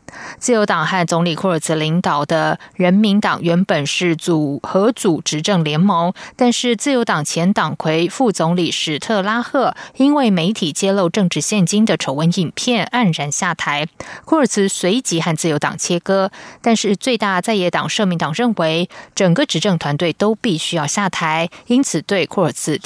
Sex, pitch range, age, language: female, 170-220 Hz, 20-39, German